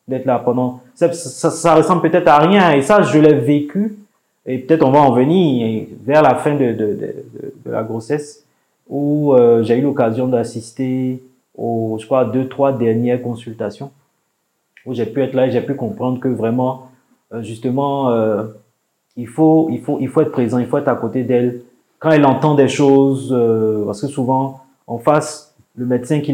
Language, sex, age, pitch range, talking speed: French, male, 30-49, 120-145 Hz, 200 wpm